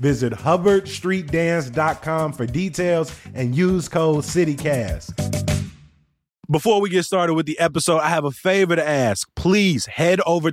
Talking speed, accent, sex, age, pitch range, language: 135 wpm, American, male, 20-39, 130-170 Hz, English